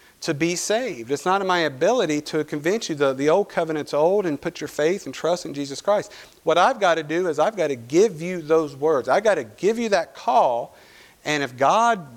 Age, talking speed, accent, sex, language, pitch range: 50-69, 235 wpm, American, male, English, 130-175 Hz